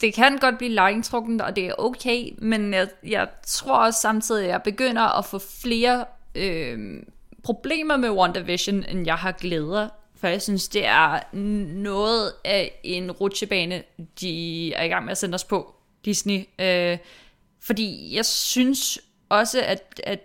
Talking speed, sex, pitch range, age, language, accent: 165 wpm, female, 190-230 Hz, 20-39, Danish, native